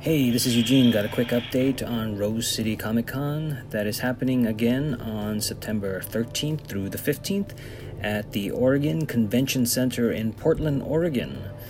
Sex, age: male, 30-49